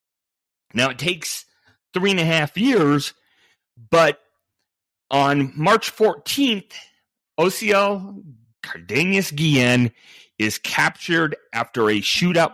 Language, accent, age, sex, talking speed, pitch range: English, American, 40-59, male, 95 wpm, 130-195 Hz